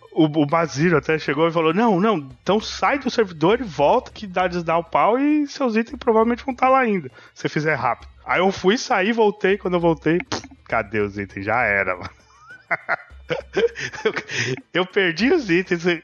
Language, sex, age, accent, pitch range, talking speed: Portuguese, male, 20-39, Brazilian, 120-185 Hz, 185 wpm